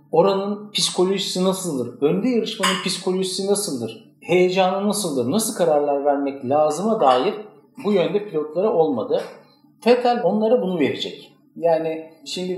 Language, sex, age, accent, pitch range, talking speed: Turkish, male, 50-69, native, 135-205 Hz, 115 wpm